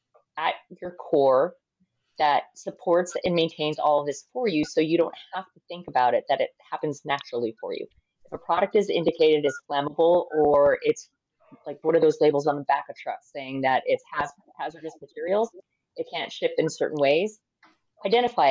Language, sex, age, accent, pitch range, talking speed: English, female, 30-49, American, 150-210 Hz, 190 wpm